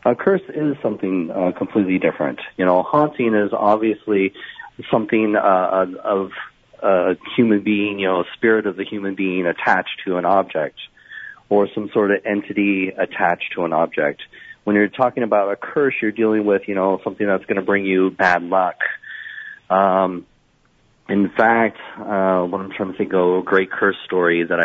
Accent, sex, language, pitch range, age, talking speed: American, male, English, 95-110 Hz, 40-59, 180 wpm